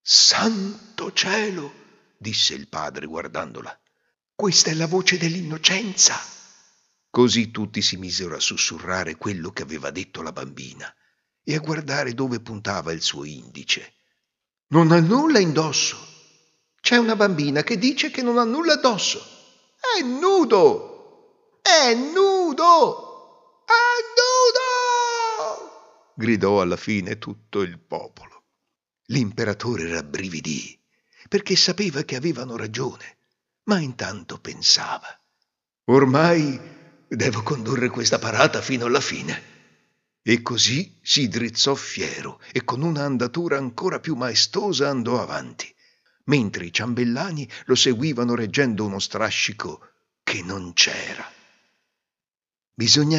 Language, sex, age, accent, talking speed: Italian, male, 60-79, native, 115 wpm